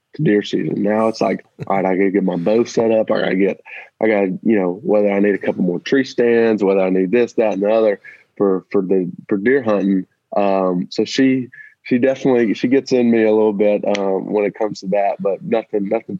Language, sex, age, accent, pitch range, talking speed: English, male, 20-39, American, 95-110 Hz, 240 wpm